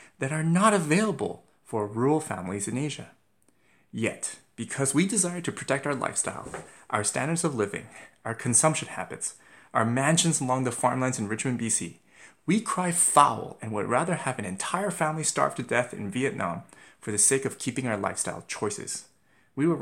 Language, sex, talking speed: English, male, 175 wpm